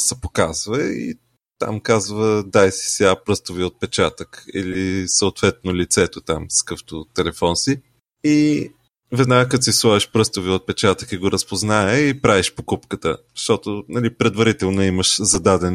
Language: Bulgarian